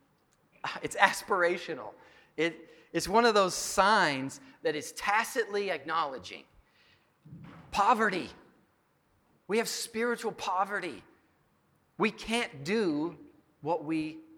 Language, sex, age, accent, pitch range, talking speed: English, male, 40-59, American, 160-230 Hz, 90 wpm